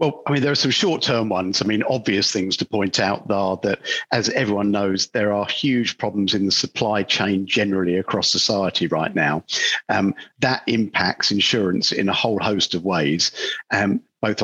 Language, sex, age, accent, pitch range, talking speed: English, male, 50-69, British, 100-120 Hz, 185 wpm